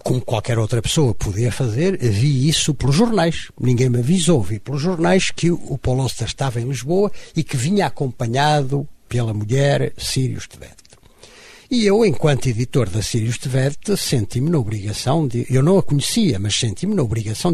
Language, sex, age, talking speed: Portuguese, male, 60-79, 170 wpm